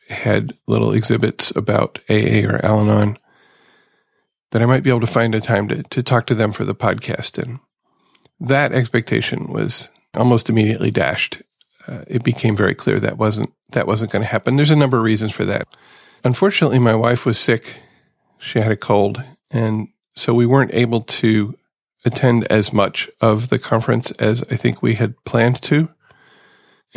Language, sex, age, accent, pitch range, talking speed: English, male, 40-59, American, 110-130 Hz, 170 wpm